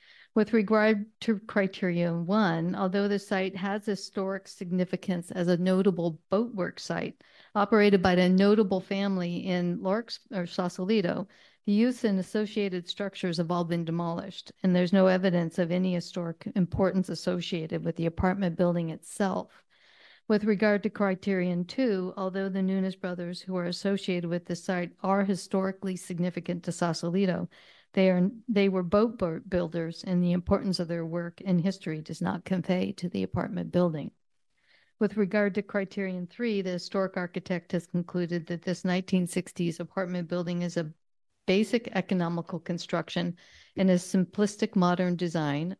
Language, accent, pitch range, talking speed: English, American, 175-200 Hz, 150 wpm